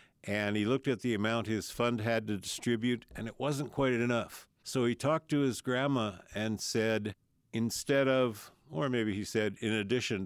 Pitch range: 100-120 Hz